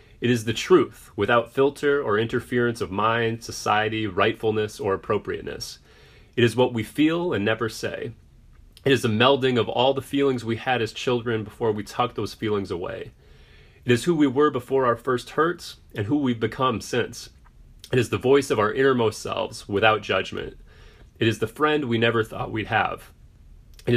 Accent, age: American, 30-49